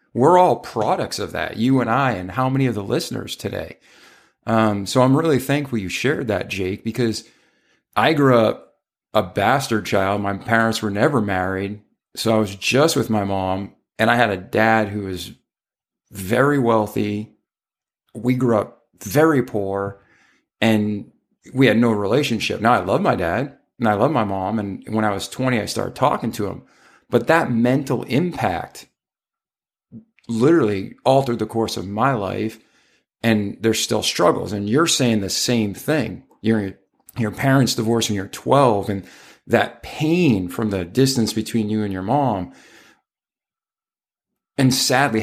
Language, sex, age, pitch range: English, male, 40-59, 105-125 Hz